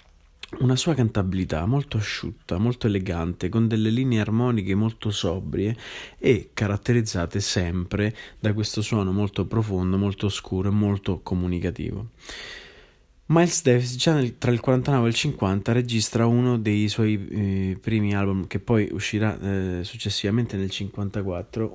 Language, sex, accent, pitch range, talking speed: Italian, male, native, 95-115 Hz, 135 wpm